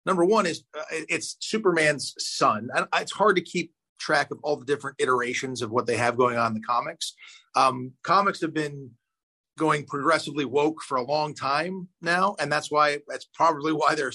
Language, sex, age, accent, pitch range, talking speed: English, male, 40-59, American, 125-170 Hz, 190 wpm